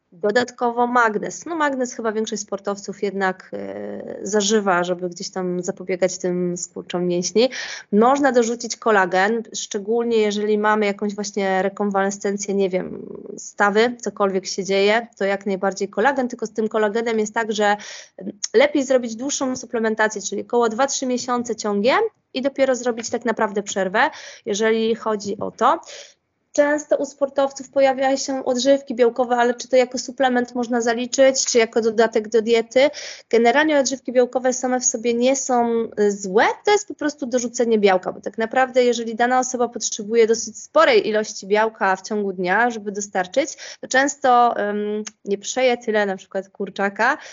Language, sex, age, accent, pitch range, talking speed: Polish, female, 20-39, native, 200-255 Hz, 155 wpm